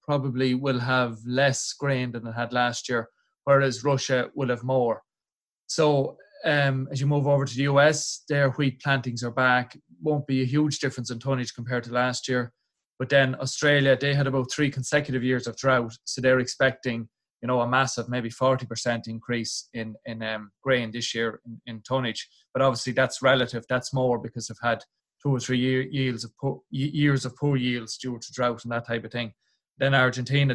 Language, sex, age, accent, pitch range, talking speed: English, male, 20-39, Irish, 120-135 Hz, 195 wpm